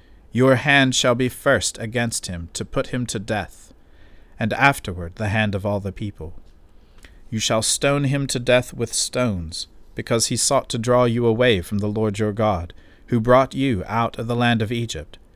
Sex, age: male, 40-59